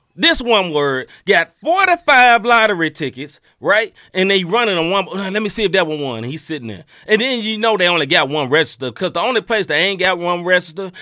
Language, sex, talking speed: English, male, 235 wpm